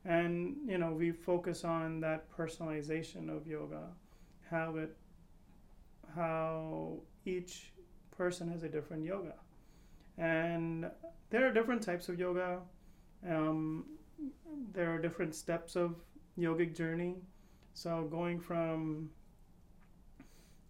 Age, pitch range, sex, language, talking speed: 30-49, 160-180 Hz, male, English, 105 wpm